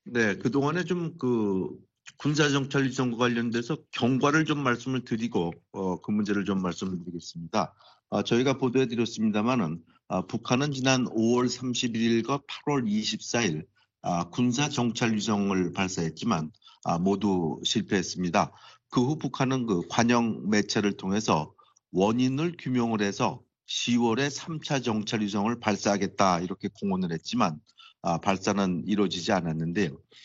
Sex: male